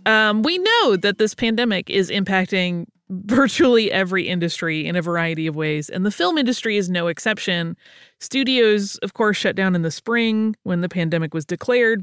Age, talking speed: 30-49, 180 wpm